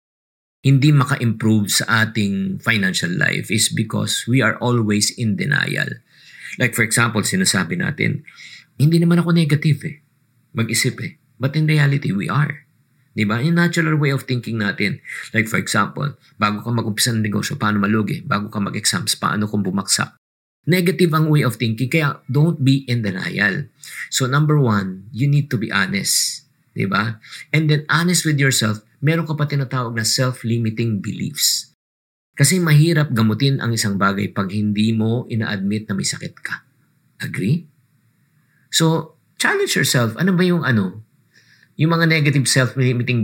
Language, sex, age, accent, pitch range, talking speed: English, male, 50-69, Filipino, 110-150 Hz, 155 wpm